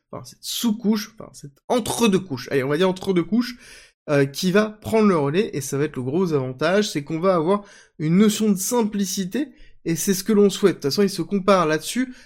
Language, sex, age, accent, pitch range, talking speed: French, male, 20-39, French, 145-210 Hz, 220 wpm